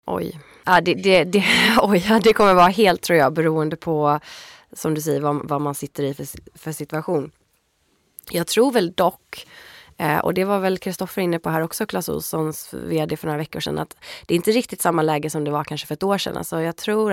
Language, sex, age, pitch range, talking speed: Swedish, female, 20-39, 150-190 Hz, 215 wpm